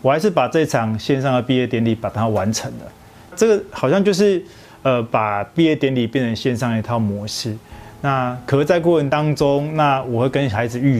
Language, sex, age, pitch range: Chinese, male, 20-39, 115-140 Hz